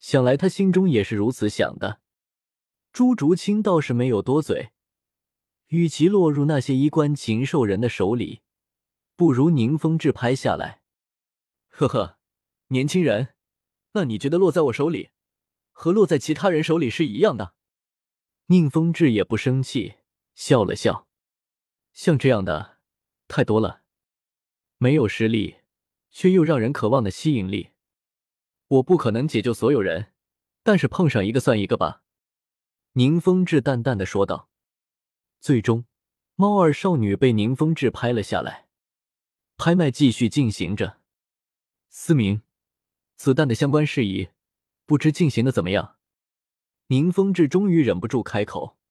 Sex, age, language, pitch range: male, 20-39, Chinese, 105-160 Hz